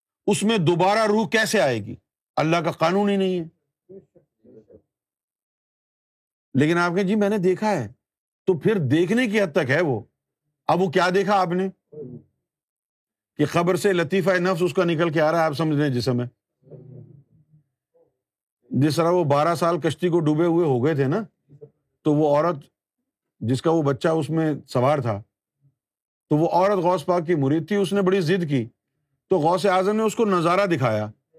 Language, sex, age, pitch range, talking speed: Urdu, male, 50-69, 140-195 Hz, 185 wpm